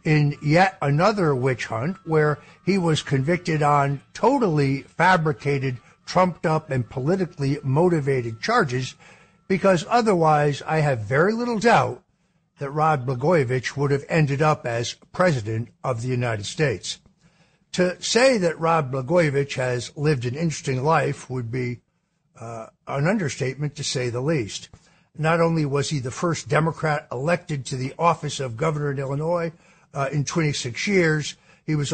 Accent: American